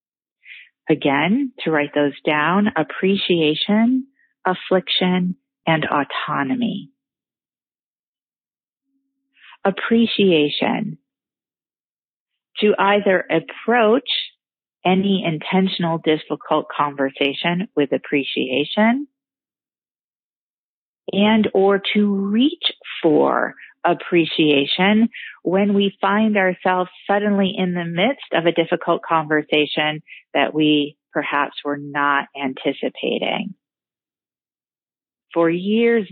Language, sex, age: English, female, 40-59